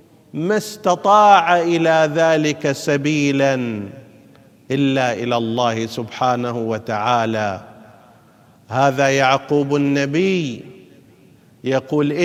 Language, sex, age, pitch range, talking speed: Arabic, male, 50-69, 125-175 Hz, 70 wpm